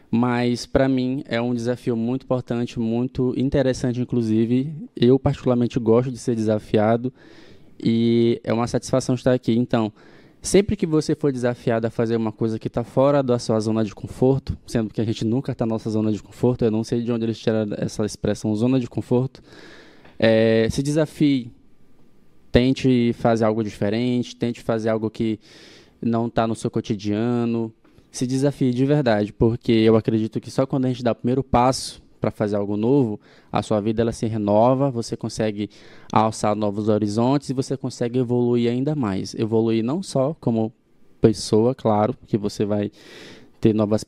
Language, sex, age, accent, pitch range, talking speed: Portuguese, male, 20-39, Brazilian, 110-130 Hz, 175 wpm